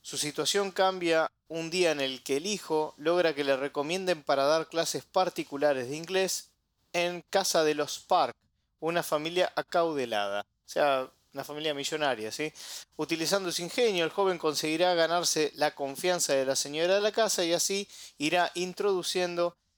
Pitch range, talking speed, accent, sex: 140-175 Hz, 160 wpm, Argentinian, male